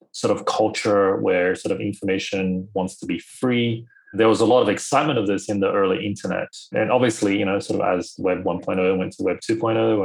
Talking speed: 215 wpm